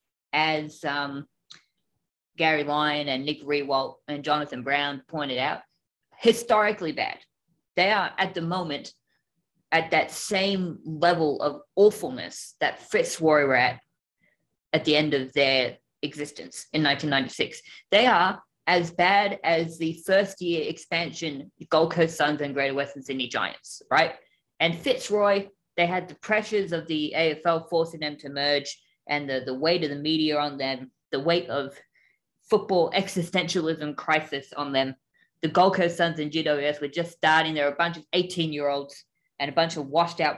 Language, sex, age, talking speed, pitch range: English, female, 20-39, 155 wpm, 145-180 Hz